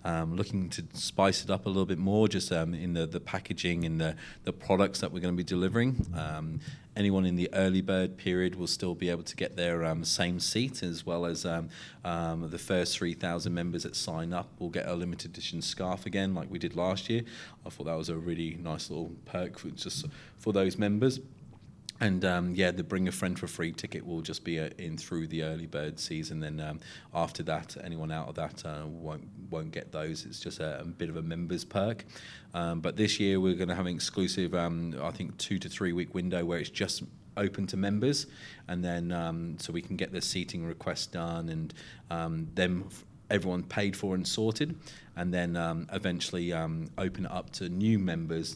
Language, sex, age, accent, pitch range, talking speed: English, male, 30-49, British, 85-95 Hz, 215 wpm